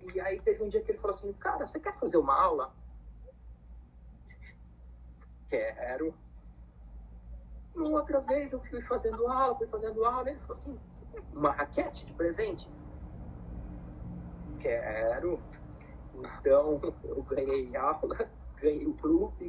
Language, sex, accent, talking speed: Portuguese, male, Brazilian, 135 wpm